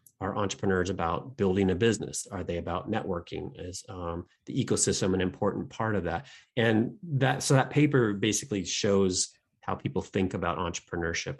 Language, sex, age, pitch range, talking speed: English, male, 30-49, 90-110 Hz, 165 wpm